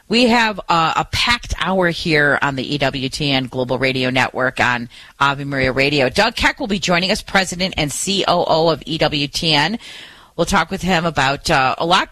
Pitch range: 135-170 Hz